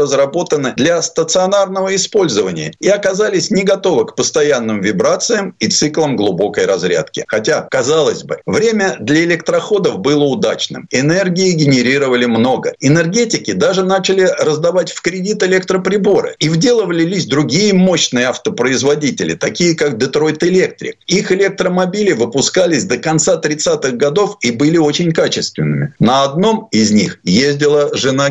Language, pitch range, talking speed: Russian, 145-200 Hz, 125 wpm